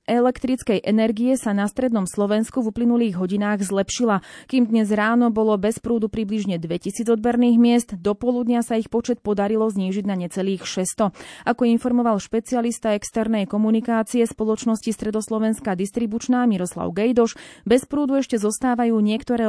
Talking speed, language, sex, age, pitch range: 140 wpm, Slovak, female, 30-49, 195-235 Hz